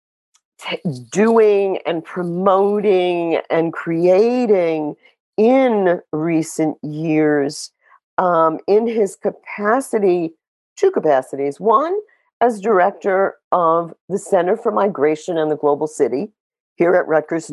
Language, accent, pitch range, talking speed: English, American, 150-205 Hz, 100 wpm